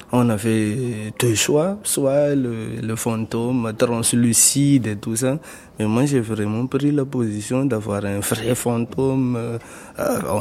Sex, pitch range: male, 110-130 Hz